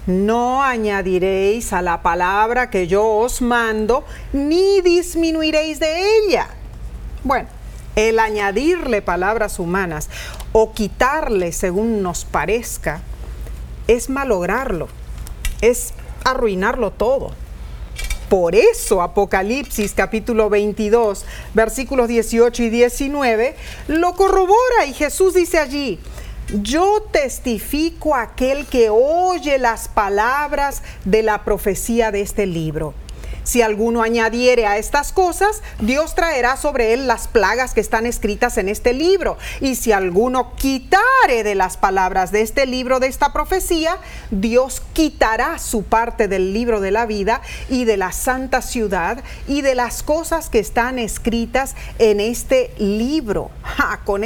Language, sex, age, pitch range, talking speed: Spanish, female, 40-59, 210-285 Hz, 125 wpm